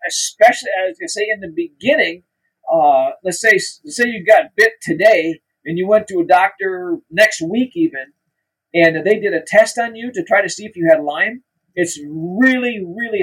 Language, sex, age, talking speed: English, male, 50-69, 190 wpm